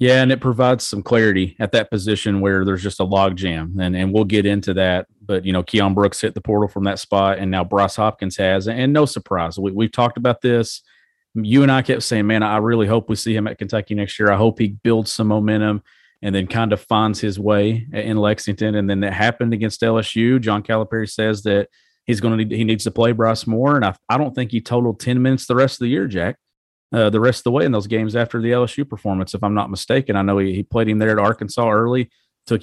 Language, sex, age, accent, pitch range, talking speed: English, male, 40-59, American, 100-120 Hz, 255 wpm